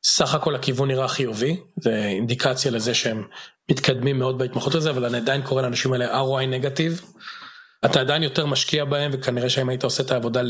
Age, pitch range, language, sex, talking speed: 40-59, 125-145 Hz, English, male, 145 wpm